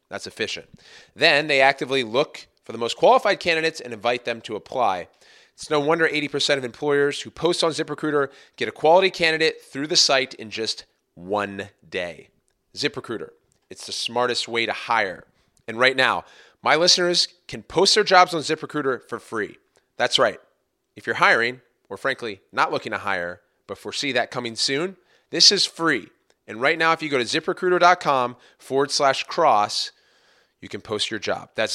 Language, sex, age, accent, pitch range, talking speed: English, male, 30-49, American, 110-165 Hz, 175 wpm